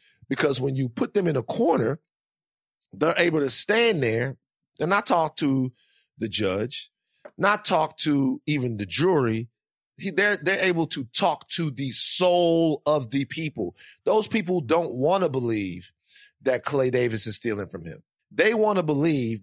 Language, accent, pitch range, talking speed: English, American, 125-185 Hz, 165 wpm